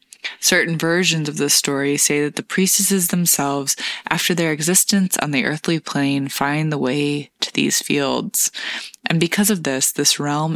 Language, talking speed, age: English, 165 wpm, 20-39